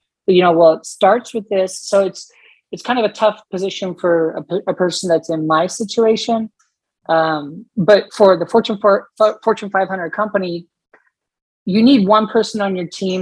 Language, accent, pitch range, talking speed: English, American, 165-195 Hz, 180 wpm